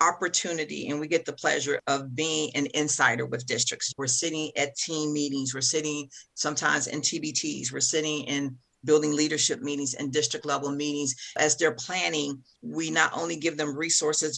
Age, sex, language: 50-69, female, English